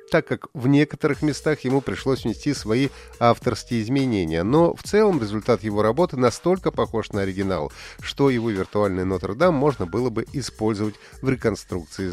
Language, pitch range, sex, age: Russian, 105-140 Hz, male, 30-49